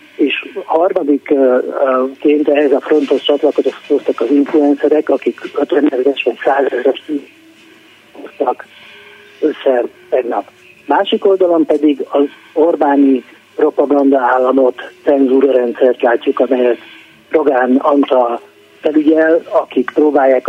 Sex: male